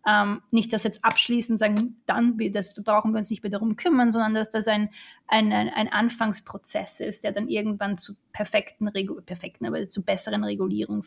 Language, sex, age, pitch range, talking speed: German, female, 20-39, 210-245 Hz, 180 wpm